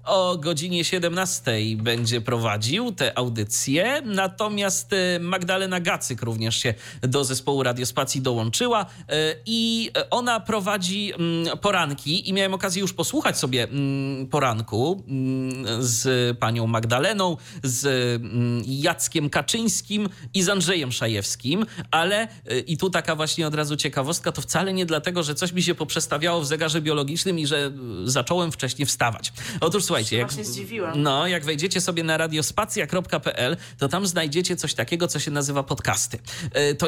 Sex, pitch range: male, 125-175 Hz